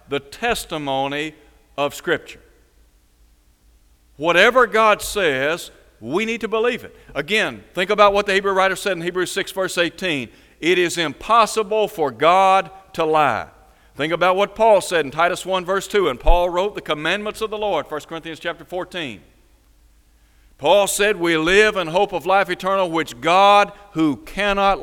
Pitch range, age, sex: 155-205 Hz, 60-79, male